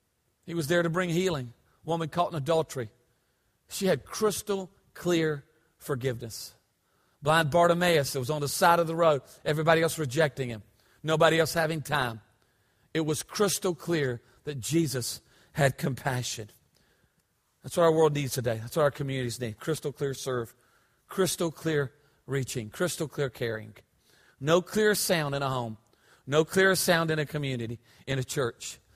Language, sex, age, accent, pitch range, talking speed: English, male, 40-59, American, 125-160 Hz, 160 wpm